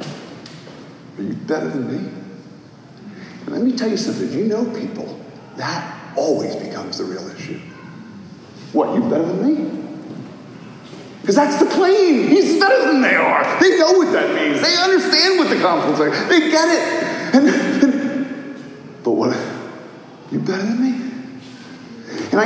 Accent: American